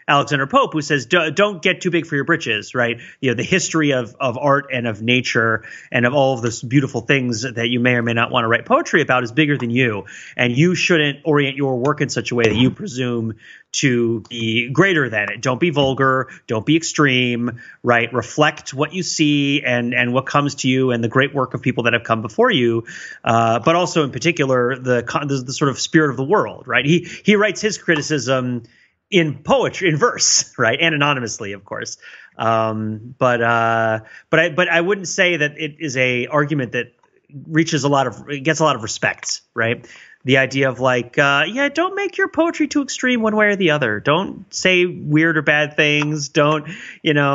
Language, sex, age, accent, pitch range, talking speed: English, male, 30-49, American, 125-155 Hz, 215 wpm